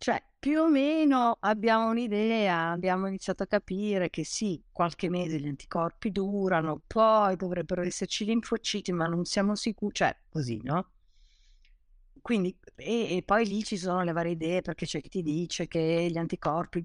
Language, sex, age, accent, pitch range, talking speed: Italian, female, 50-69, native, 145-200 Hz, 165 wpm